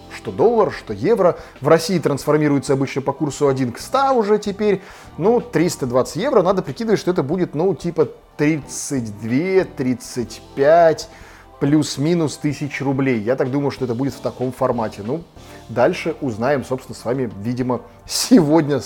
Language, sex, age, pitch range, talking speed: Russian, male, 20-39, 120-170 Hz, 145 wpm